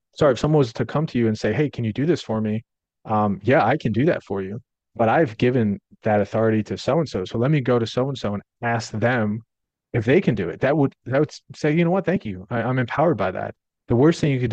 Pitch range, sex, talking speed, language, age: 105-125 Hz, male, 275 wpm, English, 30-49